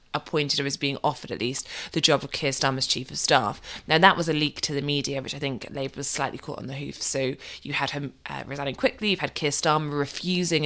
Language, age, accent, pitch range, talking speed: English, 20-39, British, 140-155 Hz, 255 wpm